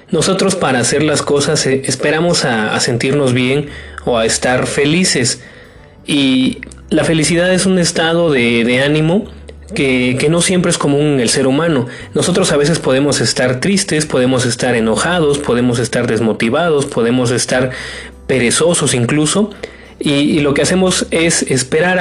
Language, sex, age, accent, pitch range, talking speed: Spanish, male, 30-49, Mexican, 120-155 Hz, 155 wpm